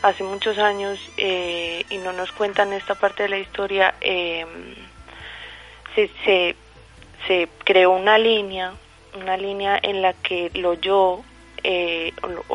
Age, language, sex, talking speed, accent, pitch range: 30-49, Spanish, female, 135 wpm, Colombian, 180-200 Hz